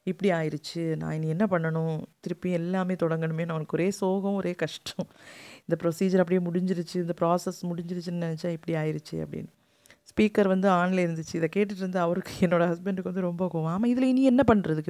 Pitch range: 165-200 Hz